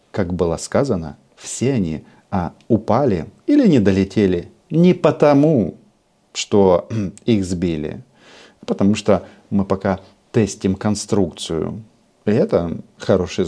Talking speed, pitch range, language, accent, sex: 110 wpm, 90-110 Hz, Russian, native, male